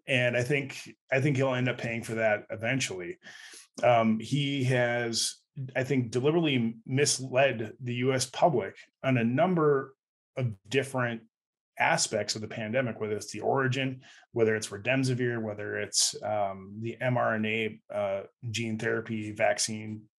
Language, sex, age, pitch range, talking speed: English, male, 30-49, 115-130 Hz, 140 wpm